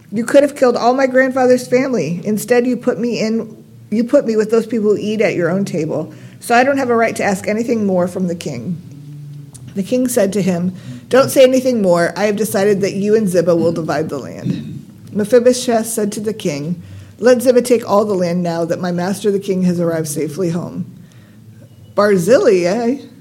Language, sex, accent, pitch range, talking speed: English, female, American, 175-225 Hz, 205 wpm